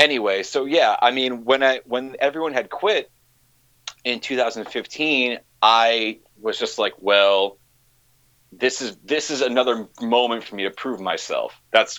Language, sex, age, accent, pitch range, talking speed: English, male, 30-49, American, 100-125 Hz, 150 wpm